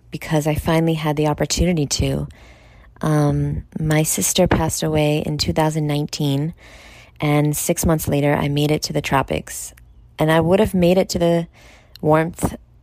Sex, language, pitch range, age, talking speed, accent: female, English, 130-155 Hz, 20-39, 155 wpm, American